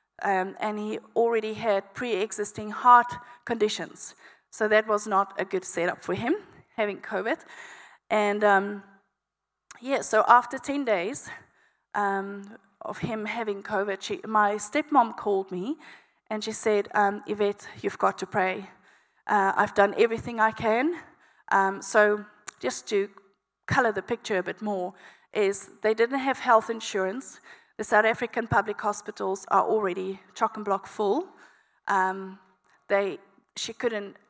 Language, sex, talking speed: English, female, 140 wpm